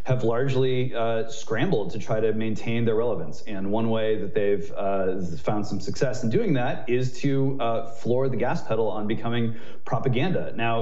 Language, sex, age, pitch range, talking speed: English, male, 30-49, 115-135 Hz, 185 wpm